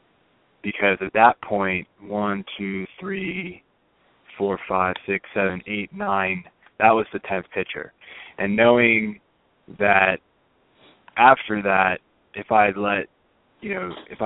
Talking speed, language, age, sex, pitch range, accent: 120 wpm, English, 20-39, male, 95-105 Hz, American